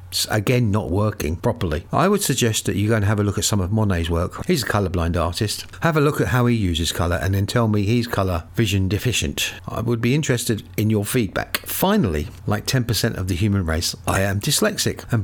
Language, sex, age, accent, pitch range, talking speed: English, male, 50-69, British, 95-130 Hz, 230 wpm